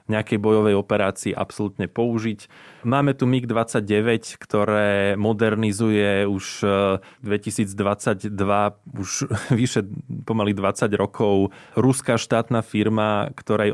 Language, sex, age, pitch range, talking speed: Slovak, male, 20-39, 100-115 Hz, 90 wpm